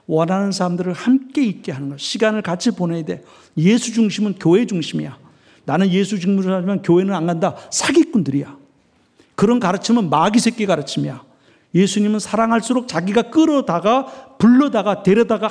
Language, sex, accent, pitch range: Korean, male, native, 145-215 Hz